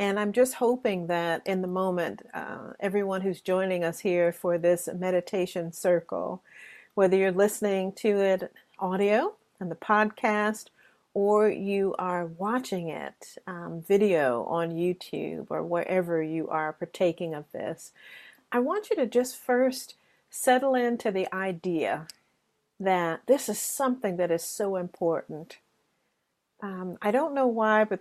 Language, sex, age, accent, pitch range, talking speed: English, female, 50-69, American, 170-210 Hz, 145 wpm